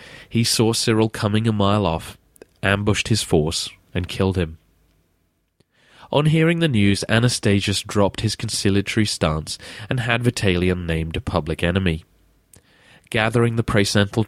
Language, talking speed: English, 135 wpm